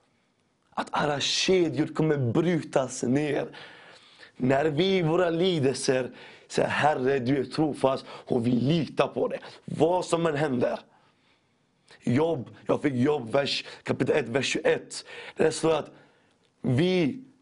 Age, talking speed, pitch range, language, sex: 30-49, 135 wpm, 130-170 Hz, Swedish, male